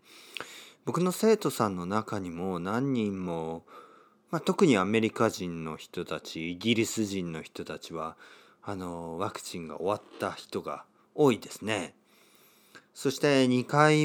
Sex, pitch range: male, 90-125 Hz